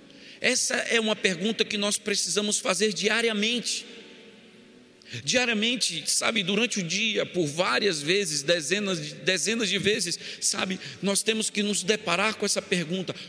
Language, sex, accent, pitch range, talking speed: Portuguese, male, Brazilian, 135-200 Hz, 135 wpm